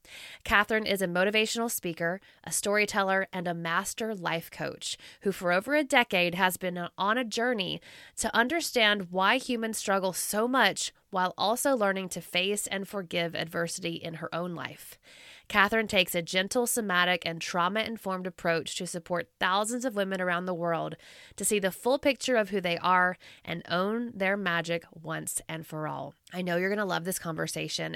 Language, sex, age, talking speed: English, female, 20-39, 175 wpm